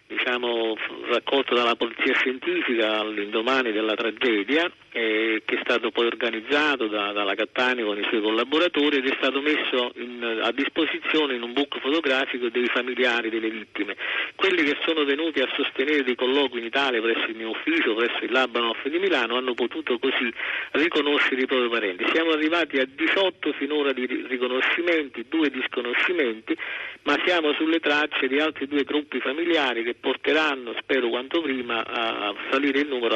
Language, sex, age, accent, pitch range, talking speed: Italian, male, 50-69, native, 115-145 Hz, 160 wpm